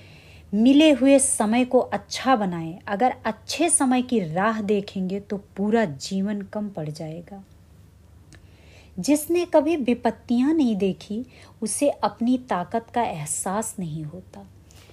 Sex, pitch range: female, 180-235 Hz